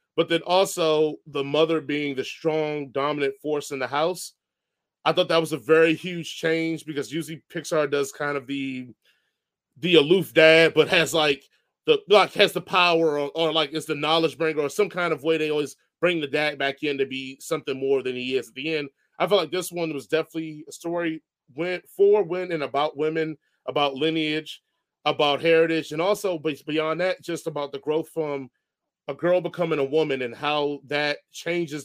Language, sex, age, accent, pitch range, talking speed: English, male, 30-49, American, 145-170 Hz, 200 wpm